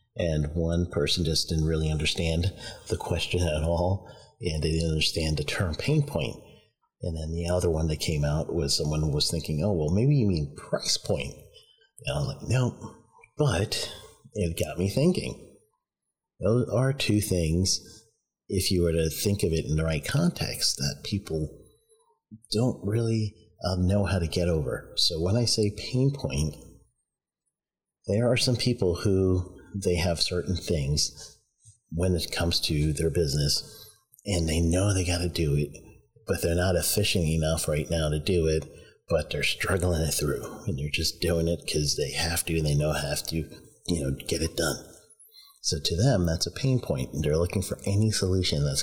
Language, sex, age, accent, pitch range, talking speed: English, male, 40-59, American, 80-105 Hz, 185 wpm